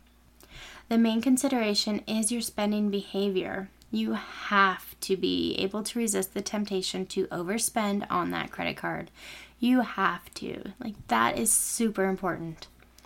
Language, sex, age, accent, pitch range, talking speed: English, female, 10-29, American, 185-220 Hz, 140 wpm